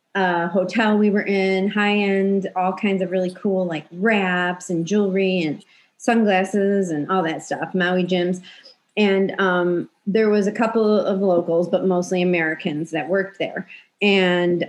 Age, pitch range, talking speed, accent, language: 30-49, 180-220 Hz, 155 wpm, American, English